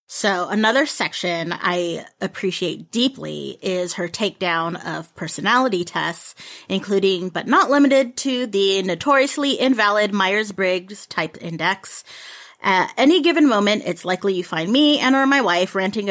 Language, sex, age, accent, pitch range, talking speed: English, female, 30-49, American, 185-250 Hz, 140 wpm